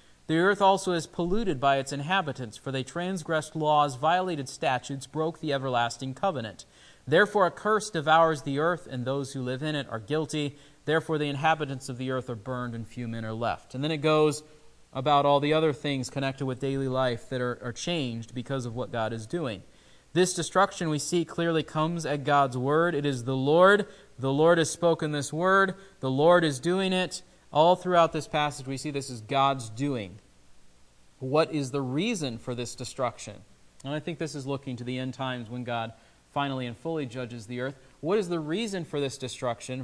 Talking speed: 200 wpm